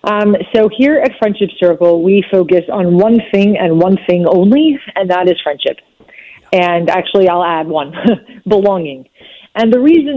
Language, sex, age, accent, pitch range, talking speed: English, female, 30-49, American, 180-220 Hz, 165 wpm